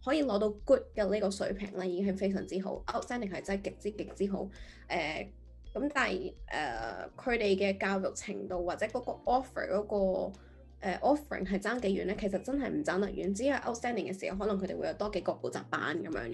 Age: 20-39